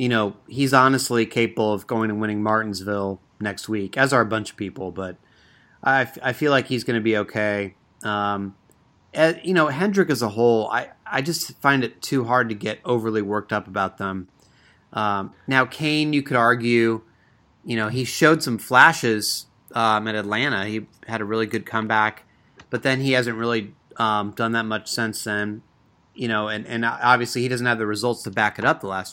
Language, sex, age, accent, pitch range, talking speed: English, male, 30-49, American, 105-125 Hz, 200 wpm